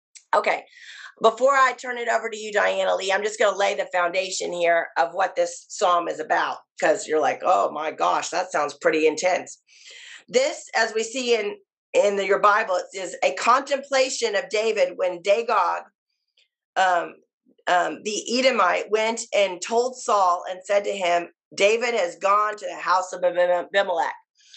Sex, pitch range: female, 185-255 Hz